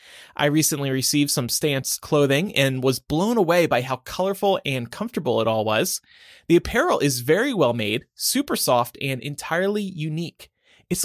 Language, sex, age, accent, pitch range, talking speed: English, male, 30-49, American, 130-190 Hz, 165 wpm